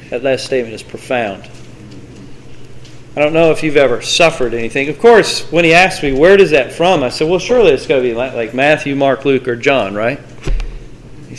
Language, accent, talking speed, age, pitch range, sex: English, American, 205 wpm, 40-59, 140-215 Hz, male